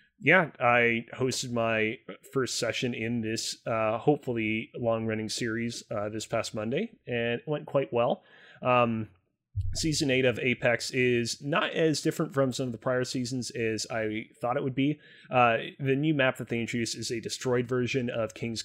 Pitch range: 115-140 Hz